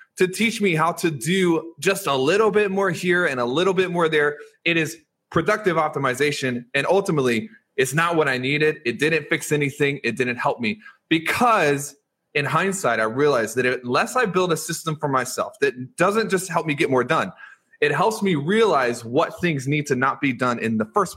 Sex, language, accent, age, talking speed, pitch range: male, English, American, 20-39, 205 wpm, 135-190 Hz